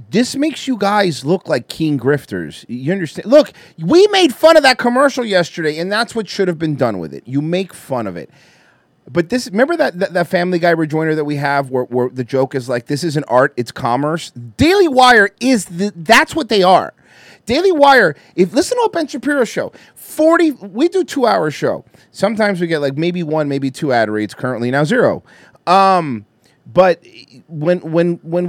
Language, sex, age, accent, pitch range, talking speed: English, male, 30-49, American, 155-220 Hz, 195 wpm